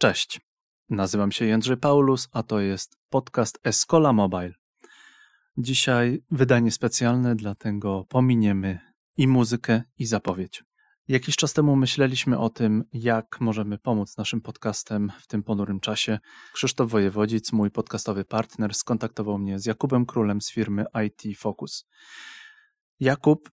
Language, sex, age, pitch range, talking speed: Polish, male, 30-49, 105-130 Hz, 130 wpm